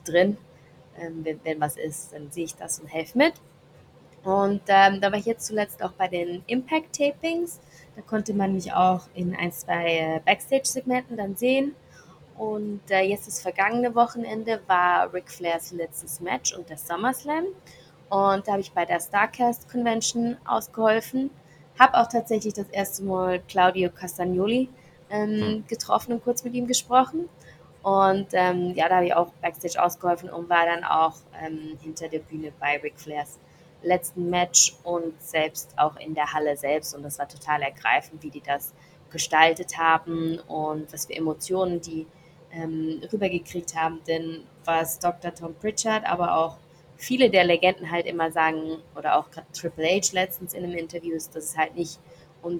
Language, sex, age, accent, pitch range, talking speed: German, female, 20-39, German, 160-200 Hz, 165 wpm